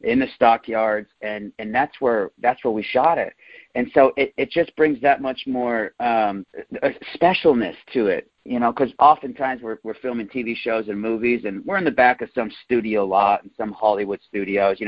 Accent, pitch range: American, 100-120 Hz